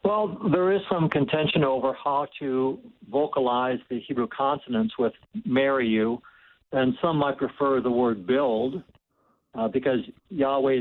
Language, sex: English, male